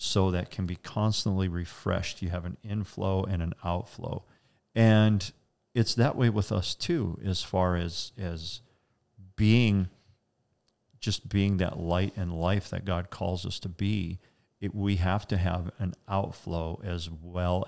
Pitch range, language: 85-105 Hz, English